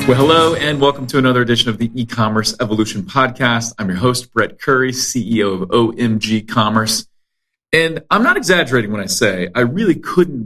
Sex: male